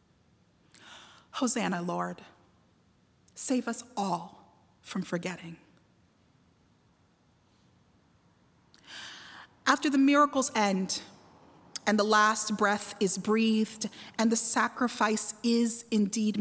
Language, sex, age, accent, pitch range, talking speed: English, female, 30-49, American, 190-260 Hz, 80 wpm